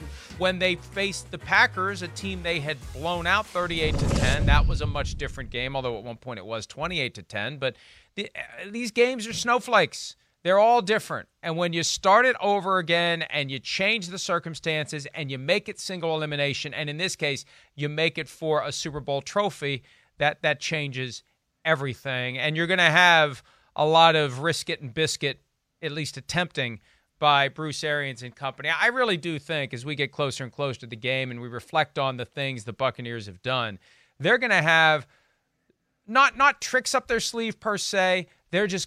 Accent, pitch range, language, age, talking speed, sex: American, 135-170 Hz, English, 40-59, 200 wpm, male